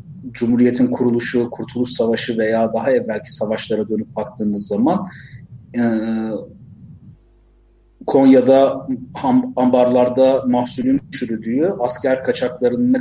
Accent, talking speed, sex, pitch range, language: native, 90 wpm, male, 115-140 Hz, Turkish